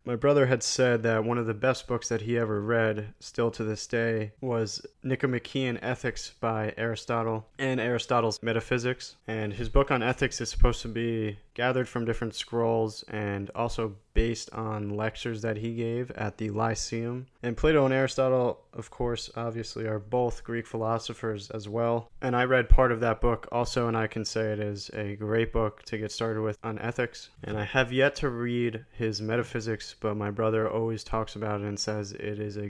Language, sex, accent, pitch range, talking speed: English, male, American, 110-125 Hz, 195 wpm